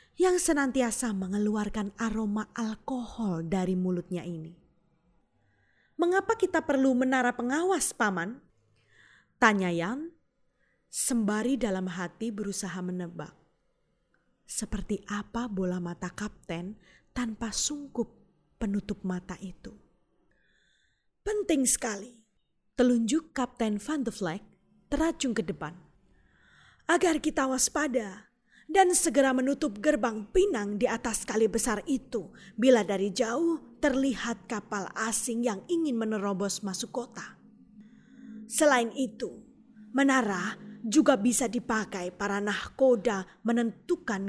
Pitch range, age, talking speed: 195-255 Hz, 20-39, 100 wpm